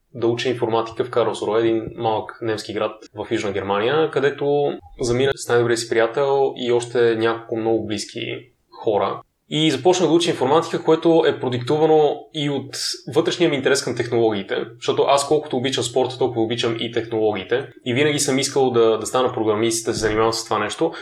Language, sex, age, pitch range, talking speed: Bulgarian, male, 20-39, 115-140 Hz, 175 wpm